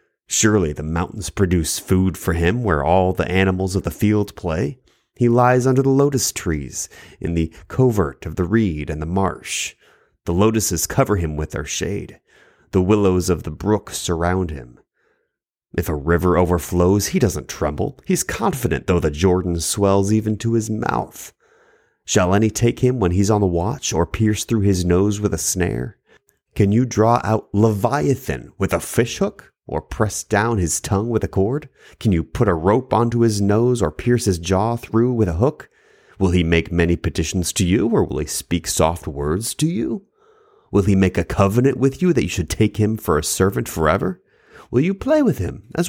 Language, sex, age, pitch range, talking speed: English, male, 30-49, 90-120 Hz, 190 wpm